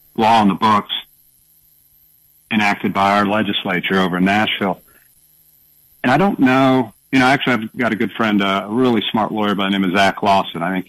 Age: 50-69